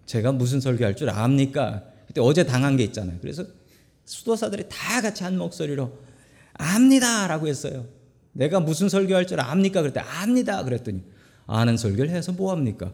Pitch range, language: 115-165 Hz, Korean